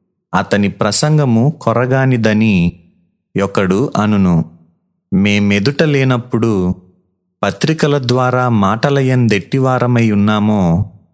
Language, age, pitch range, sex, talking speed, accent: Telugu, 30-49, 100-130 Hz, male, 55 wpm, native